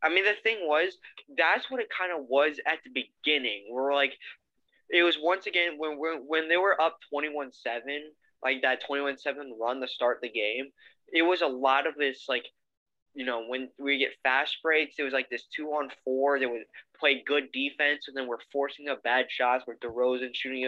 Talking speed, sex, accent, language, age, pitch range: 215 wpm, male, American, English, 10-29, 125-145 Hz